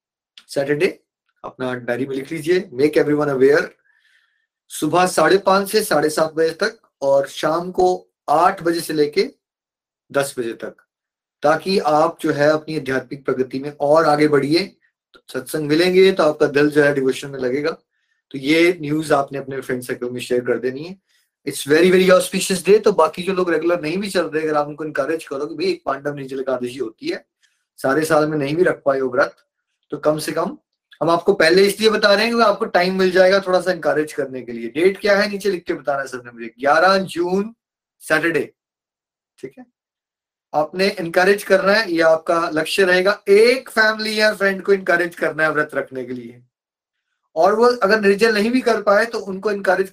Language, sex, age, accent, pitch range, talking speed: Hindi, male, 20-39, native, 145-200 Hz, 200 wpm